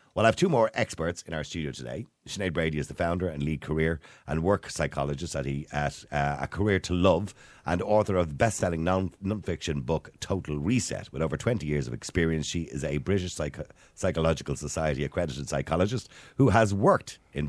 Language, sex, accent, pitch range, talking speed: English, male, Irish, 70-90 Hz, 180 wpm